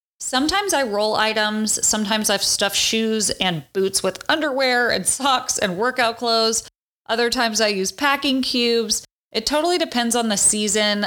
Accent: American